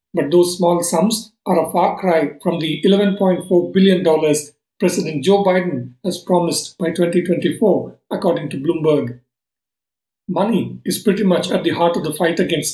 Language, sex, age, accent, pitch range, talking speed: English, male, 50-69, Indian, 165-190 Hz, 155 wpm